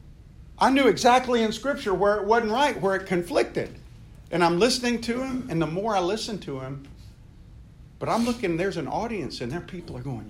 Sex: male